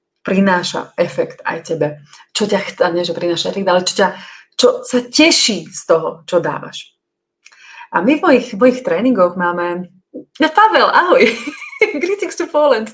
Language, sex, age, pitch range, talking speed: Slovak, female, 30-49, 175-250 Hz, 155 wpm